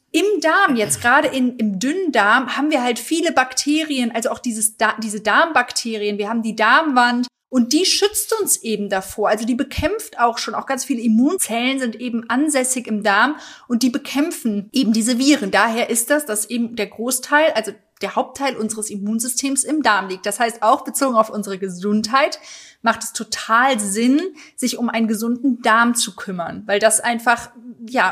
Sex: female